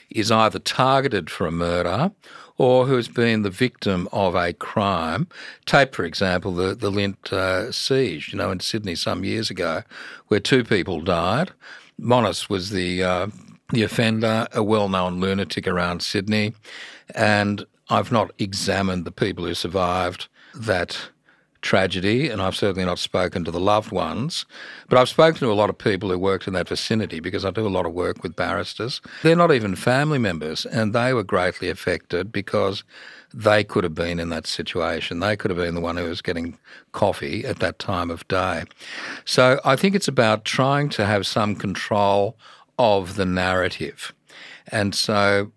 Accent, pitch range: Australian, 90-110 Hz